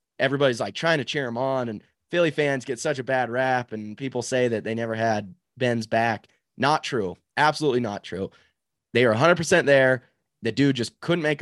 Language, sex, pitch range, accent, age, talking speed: English, male, 105-135 Hz, American, 20-39, 205 wpm